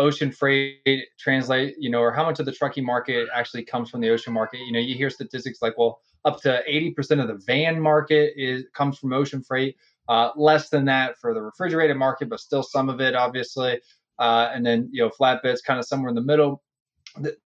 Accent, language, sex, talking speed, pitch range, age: American, English, male, 220 wpm, 120-150 Hz, 20-39